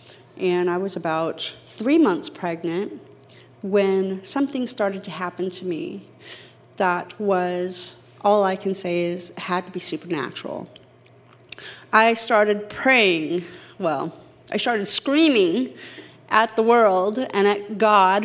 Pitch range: 180-220 Hz